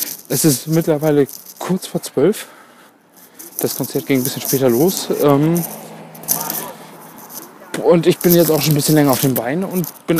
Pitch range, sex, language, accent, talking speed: 130-170 Hz, male, German, German, 160 wpm